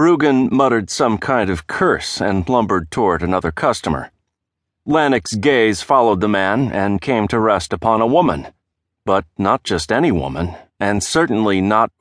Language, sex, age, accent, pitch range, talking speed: English, male, 40-59, American, 90-115 Hz, 155 wpm